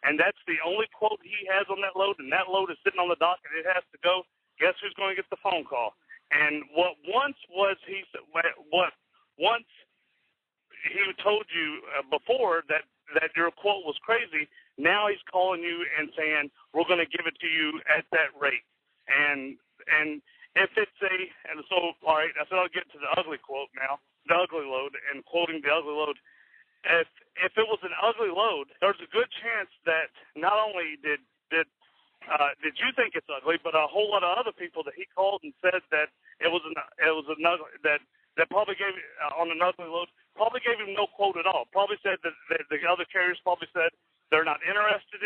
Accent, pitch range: American, 155-200 Hz